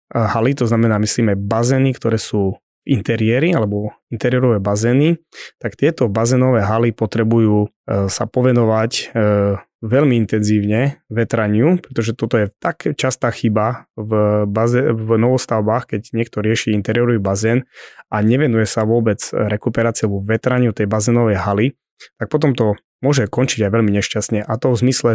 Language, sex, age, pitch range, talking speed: Slovak, male, 20-39, 110-125 Hz, 140 wpm